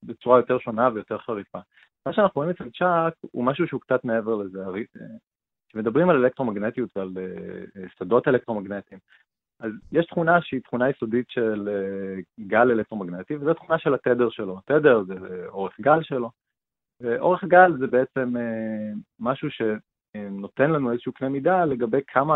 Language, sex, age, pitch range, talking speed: Hebrew, male, 30-49, 110-135 Hz, 140 wpm